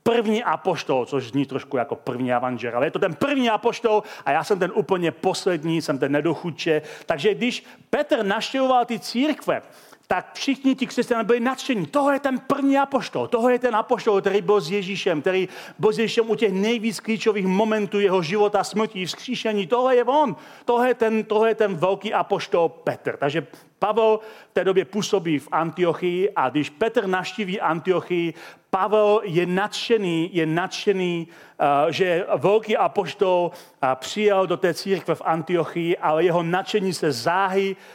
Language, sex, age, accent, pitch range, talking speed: Czech, male, 40-59, native, 165-235 Hz, 170 wpm